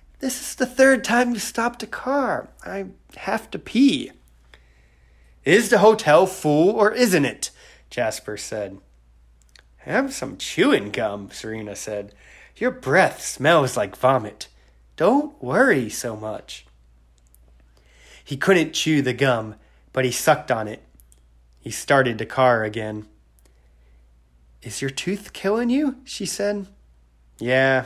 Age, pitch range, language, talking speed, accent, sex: 30-49, 100-155 Hz, English, 130 wpm, American, male